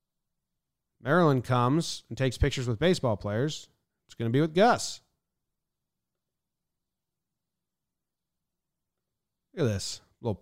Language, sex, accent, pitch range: English, male, American, 105-150 Hz